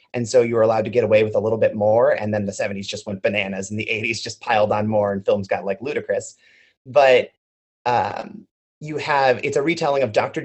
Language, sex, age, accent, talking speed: English, male, 30-49, American, 235 wpm